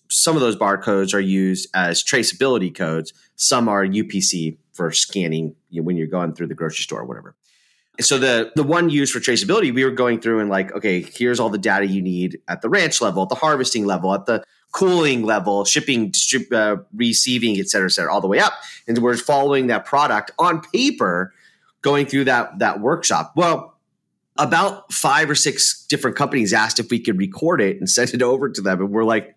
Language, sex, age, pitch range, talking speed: English, male, 30-49, 100-135 Hz, 205 wpm